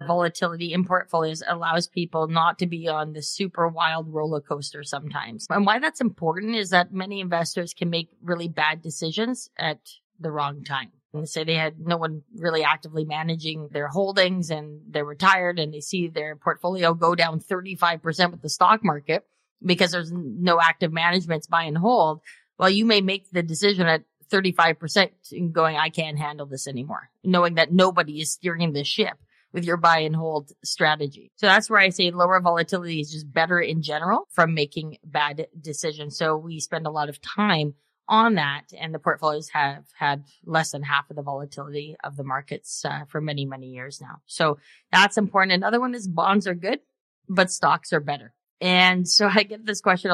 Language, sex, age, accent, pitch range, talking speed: English, female, 30-49, American, 155-185 Hz, 190 wpm